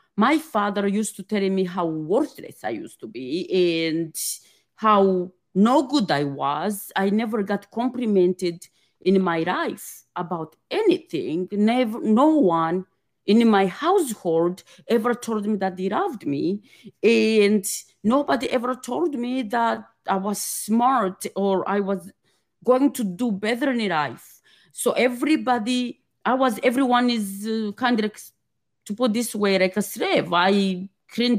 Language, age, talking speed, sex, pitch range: English, 40-59, 140 wpm, female, 190-235 Hz